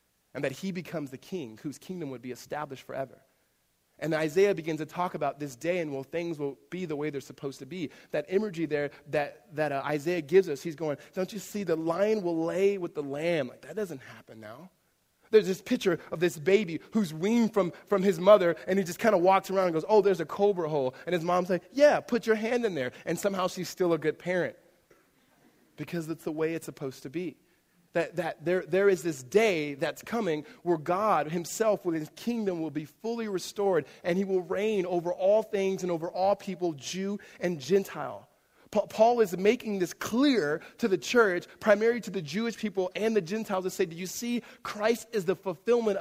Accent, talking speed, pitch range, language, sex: American, 220 wpm, 165-210 Hz, English, male